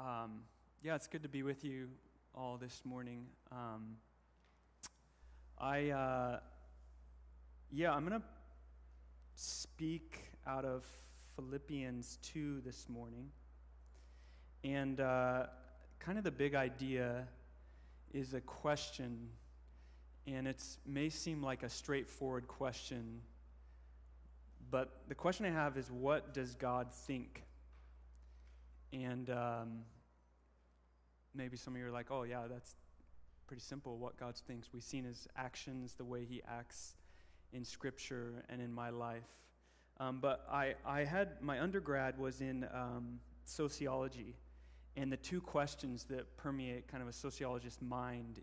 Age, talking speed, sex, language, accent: 30-49, 130 wpm, male, English, American